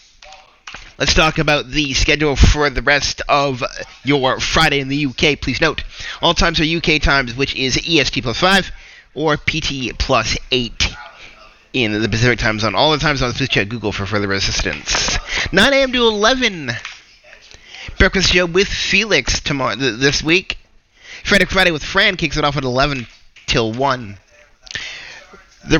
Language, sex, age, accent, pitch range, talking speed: English, male, 30-49, American, 120-160 Hz, 165 wpm